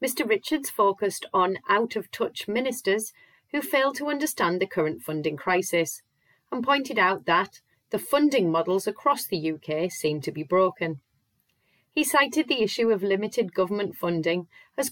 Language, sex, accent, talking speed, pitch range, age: English, female, British, 150 wpm, 165-240 Hz, 30-49